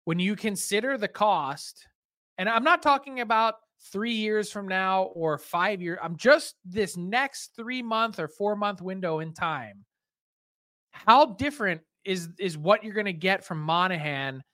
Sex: male